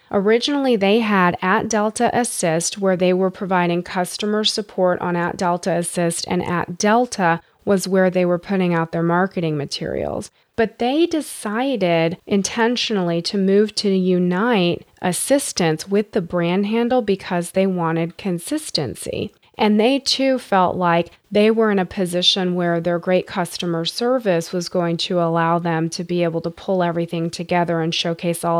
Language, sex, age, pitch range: English, female, 30-49, 170-205 Hz